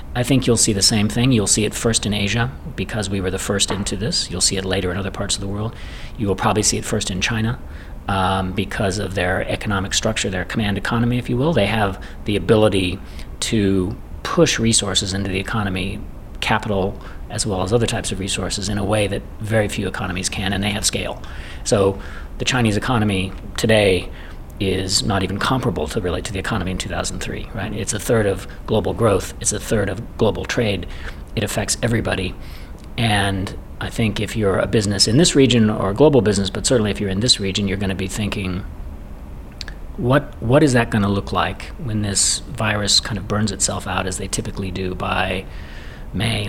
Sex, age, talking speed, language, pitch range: male, 40-59, 210 wpm, English, 90-110 Hz